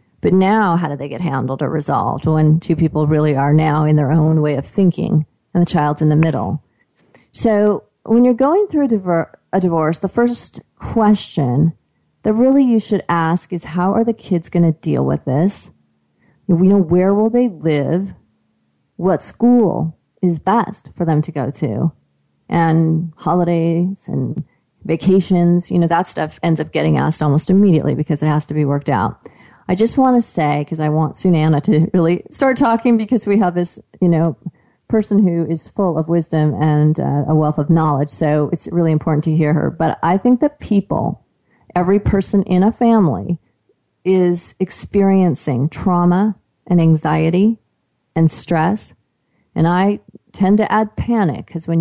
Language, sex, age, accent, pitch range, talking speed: English, female, 30-49, American, 155-200 Hz, 175 wpm